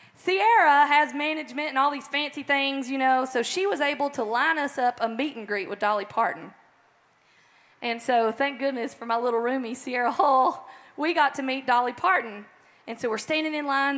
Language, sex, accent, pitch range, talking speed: English, female, American, 235-300 Hz, 200 wpm